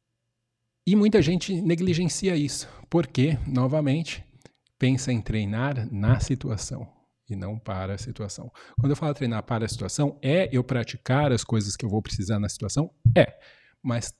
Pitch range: 110-140 Hz